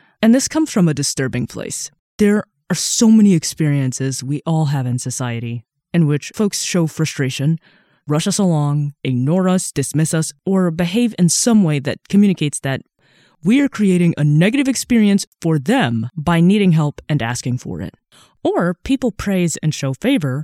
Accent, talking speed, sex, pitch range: American, 170 wpm, female, 140-195 Hz